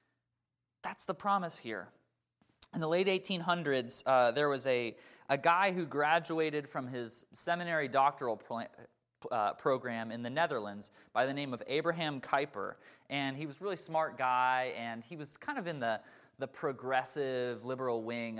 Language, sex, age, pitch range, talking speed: English, male, 20-39, 120-160 Hz, 165 wpm